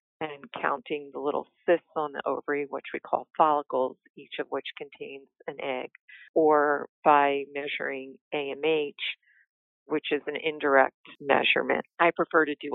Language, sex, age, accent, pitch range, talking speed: English, female, 50-69, American, 140-160 Hz, 145 wpm